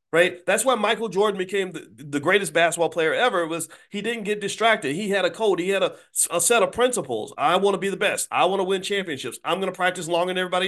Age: 40-59